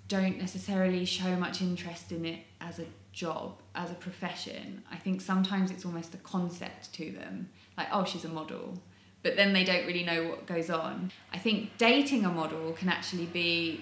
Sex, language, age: female, English, 20-39